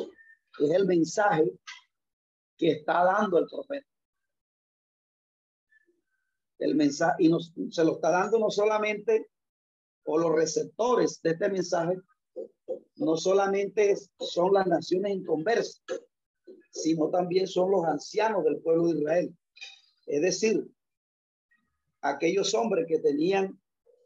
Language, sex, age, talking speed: Spanish, male, 40-59, 115 wpm